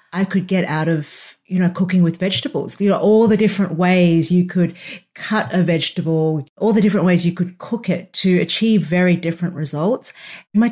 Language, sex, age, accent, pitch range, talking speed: English, female, 40-59, Australian, 160-195 Hz, 195 wpm